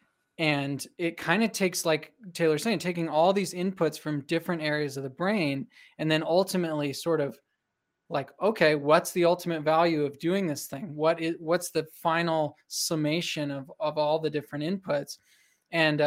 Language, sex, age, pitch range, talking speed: English, male, 20-39, 145-170 Hz, 170 wpm